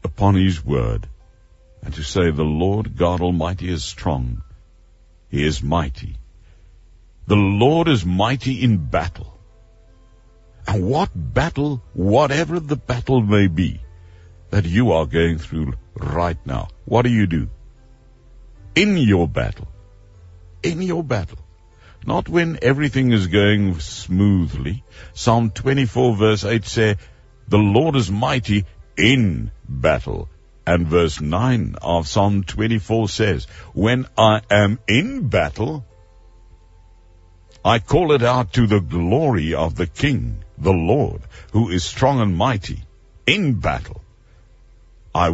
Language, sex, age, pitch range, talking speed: English, male, 60-79, 90-115 Hz, 125 wpm